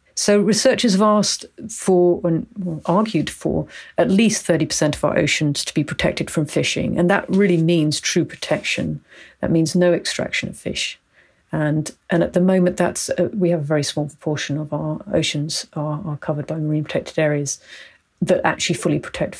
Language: English